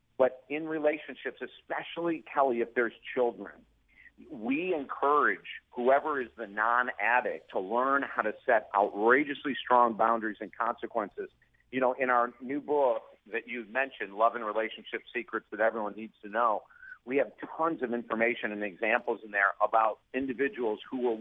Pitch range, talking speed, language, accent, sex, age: 115-140 Hz, 155 wpm, English, American, male, 50-69